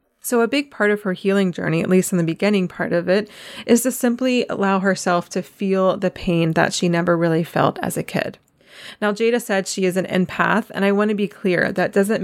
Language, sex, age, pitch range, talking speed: English, female, 20-39, 175-210 Hz, 235 wpm